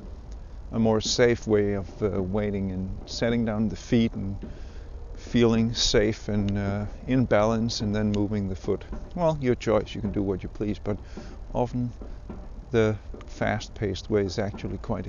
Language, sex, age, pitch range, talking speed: English, male, 50-69, 95-115 Hz, 165 wpm